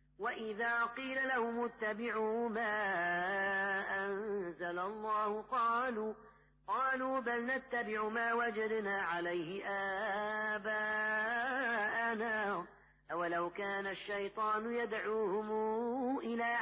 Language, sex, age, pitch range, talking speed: Arabic, female, 30-49, 200-235 Hz, 70 wpm